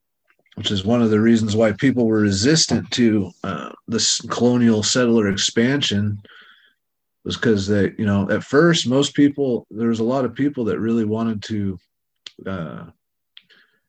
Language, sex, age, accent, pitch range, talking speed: English, male, 30-49, American, 100-115 Hz, 155 wpm